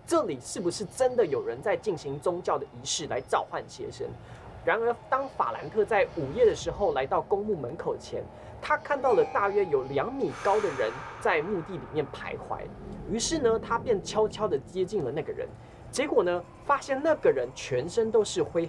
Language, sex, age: Chinese, male, 20-39